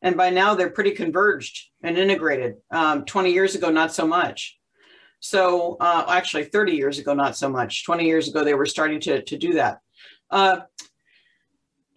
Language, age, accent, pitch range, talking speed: English, 50-69, American, 175-205 Hz, 175 wpm